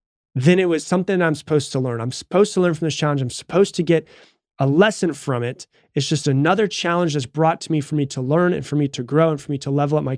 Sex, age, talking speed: male, 30-49, 275 wpm